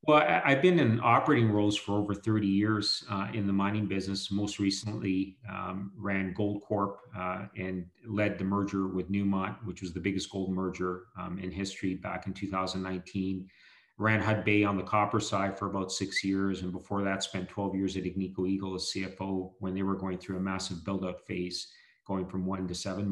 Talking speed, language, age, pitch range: 195 wpm, English, 40-59, 95-105 Hz